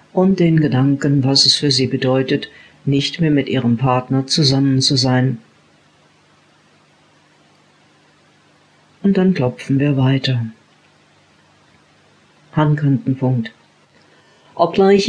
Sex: female